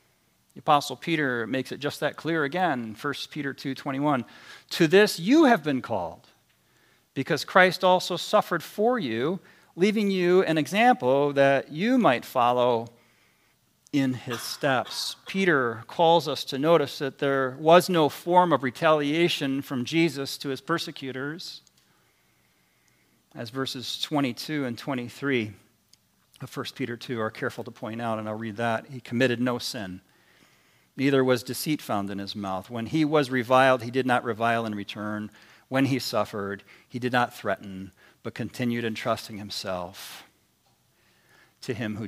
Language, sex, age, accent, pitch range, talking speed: English, male, 40-59, American, 115-155 Hz, 155 wpm